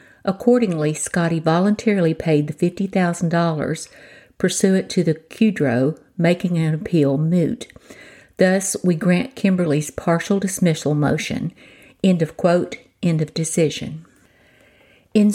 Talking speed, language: 110 wpm, English